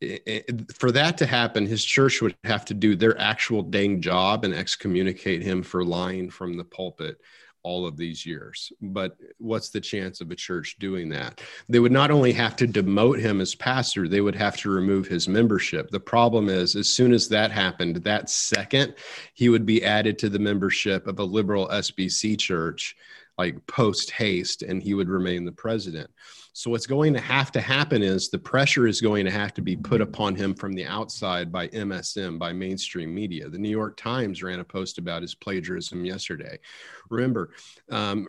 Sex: male